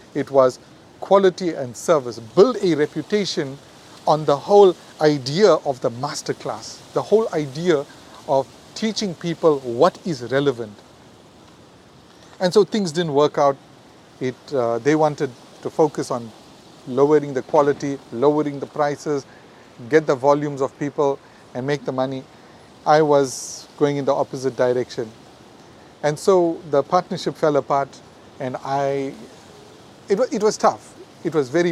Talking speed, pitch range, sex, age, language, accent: 140 wpm, 130-165 Hz, male, 40-59, English, Indian